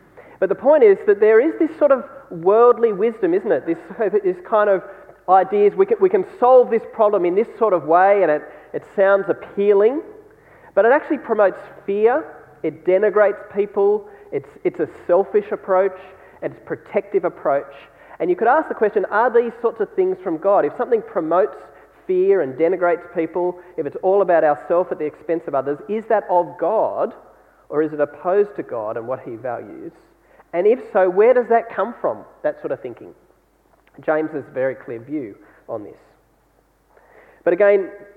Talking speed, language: 185 wpm, English